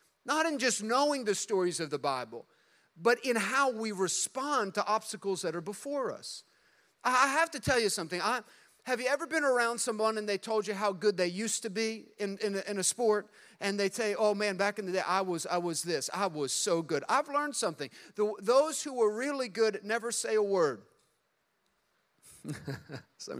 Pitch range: 195-250 Hz